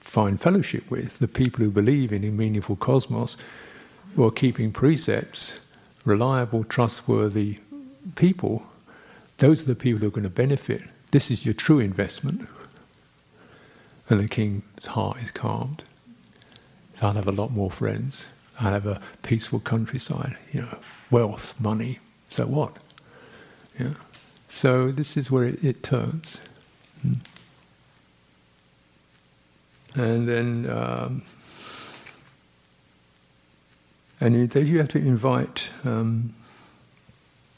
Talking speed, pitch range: 115 wpm, 105-140 Hz